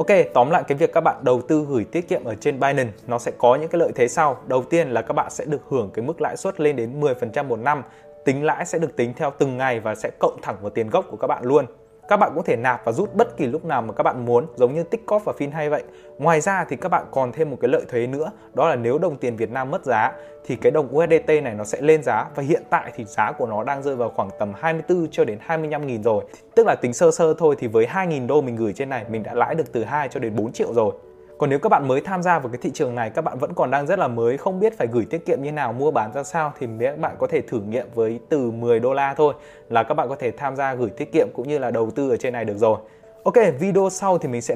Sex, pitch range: male, 120-175 Hz